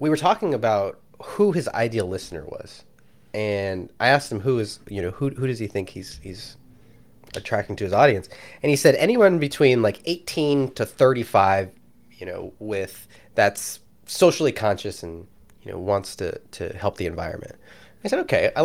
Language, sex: English, male